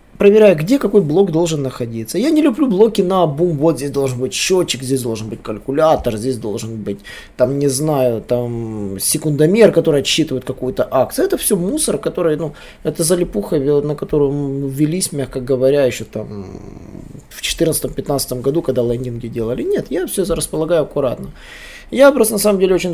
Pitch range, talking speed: 140-190 Hz, 165 wpm